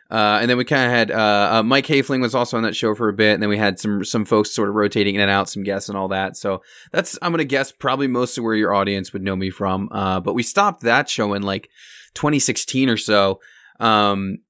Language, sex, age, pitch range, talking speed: English, male, 20-39, 100-120 Hz, 270 wpm